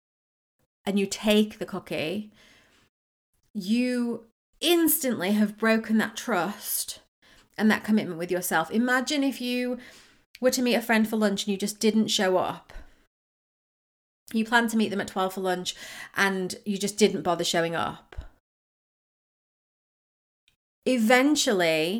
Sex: female